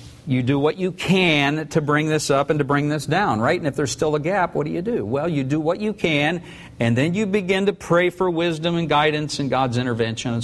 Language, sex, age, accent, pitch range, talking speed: English, male, 50-69, American, 125-165 Hz, 260 wpm